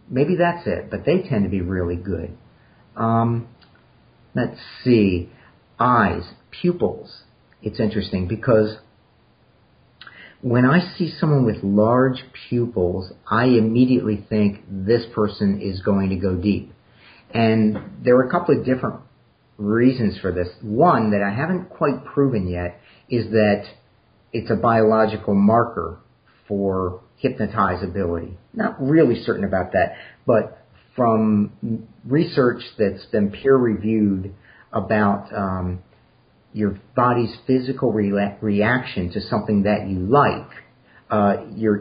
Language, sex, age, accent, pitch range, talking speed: English, male, 50-69, American, 100-125 Hz, 120 wpm